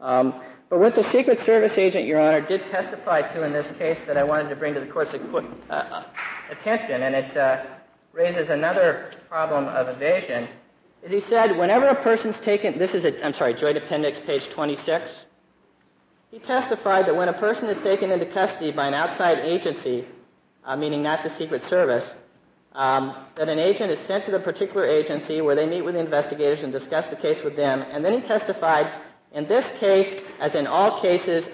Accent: American